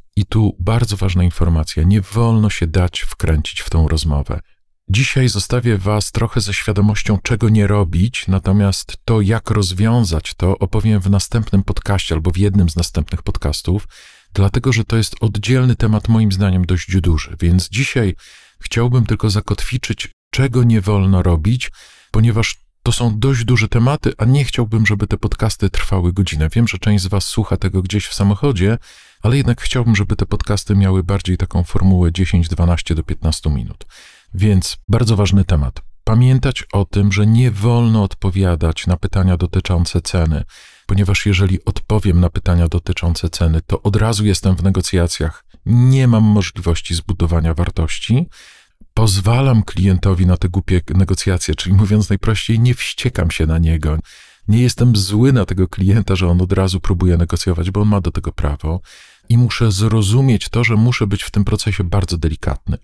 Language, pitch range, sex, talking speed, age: Polish, 90-110 Hz, male, 160 wpm, 50-69